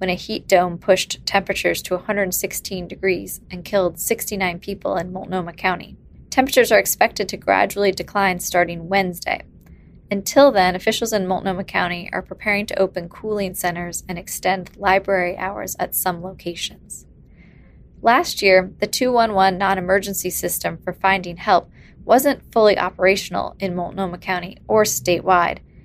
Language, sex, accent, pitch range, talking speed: English, female, American, 180-200 Hz, 140 wpm